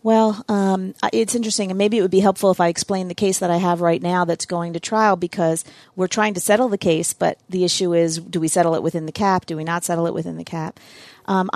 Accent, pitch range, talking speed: American, 165-190 Hz, 265 wpm